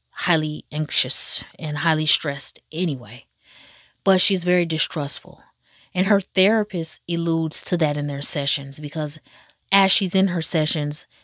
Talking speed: 135 wpm